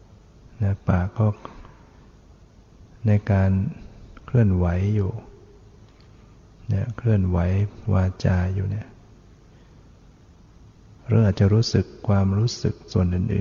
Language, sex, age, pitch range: Thai, male, 60-79, 100-115 Hz